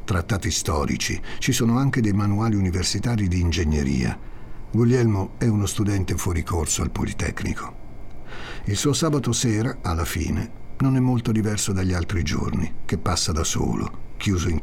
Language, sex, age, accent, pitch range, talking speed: Italian, male, 60-79, native, 95-115 Hz, 150 wpm